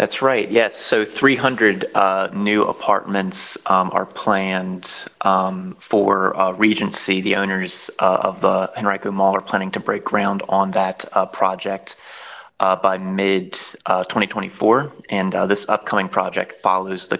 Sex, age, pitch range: male, 20-39, 95-100 Hz